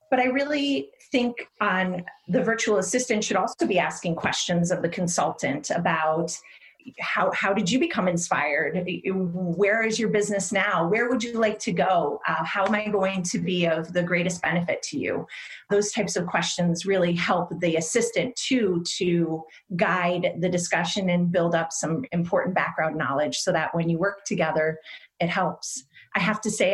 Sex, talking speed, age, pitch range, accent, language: female, 180 wpm, 30-49, 170-215 Hz, American, English